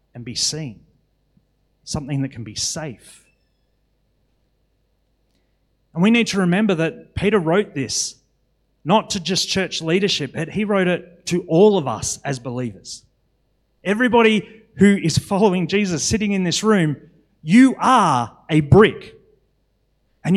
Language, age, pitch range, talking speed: English, 30-49, 130-185 Hz, 135 wpm